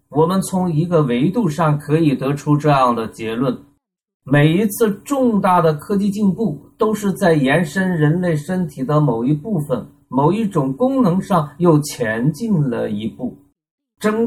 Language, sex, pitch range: Chinese, male, 135-180 Hz